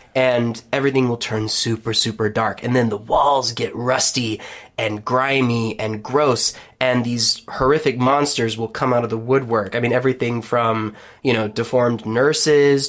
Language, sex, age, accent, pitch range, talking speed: English, male, 20-39, American, 120-135 Hz, 165 wpm